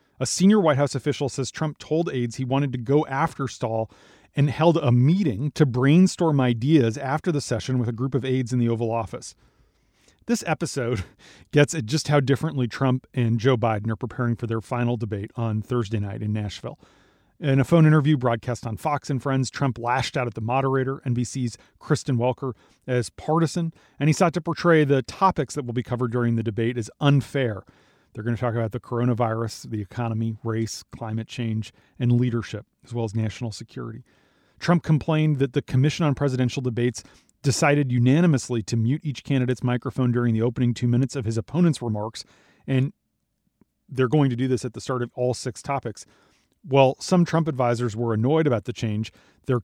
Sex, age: male, 40-59